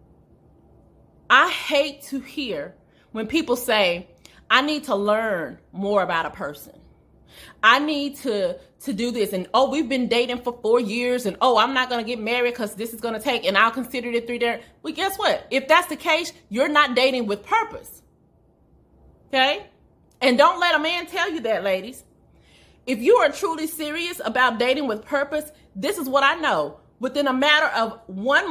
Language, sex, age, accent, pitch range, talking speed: English, female, 30-49, American, 235-310 Hz, 190 wpm